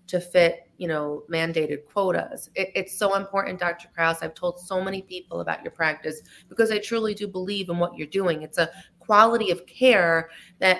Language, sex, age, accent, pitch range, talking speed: English, female, 30-49, American, 155-190 Hz, 195 wpm